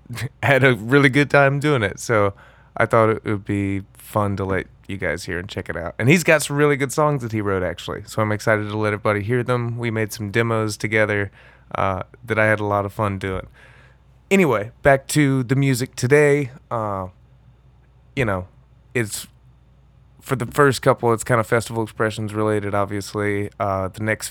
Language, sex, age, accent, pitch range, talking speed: English, male, 20-39, American, 100-125 Hz, 200 wpm